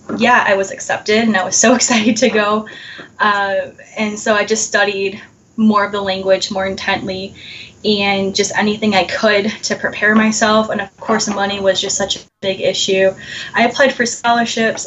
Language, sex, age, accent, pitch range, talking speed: English, female, 10-29, American, 190-220 Hz, 180 wpm